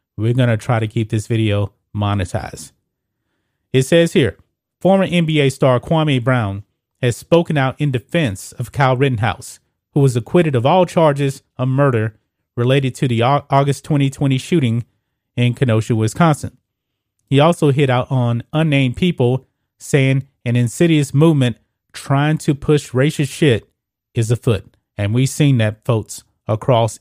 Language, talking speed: English, 145 wpm